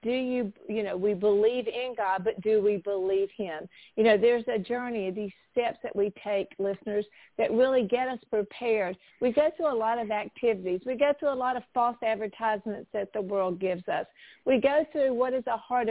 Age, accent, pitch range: 50-69, American, 210-260 Hz